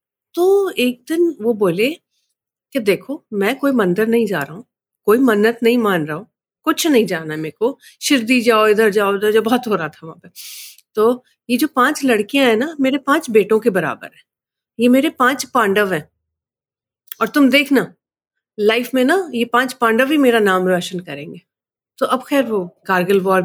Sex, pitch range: female, 200-265 Hz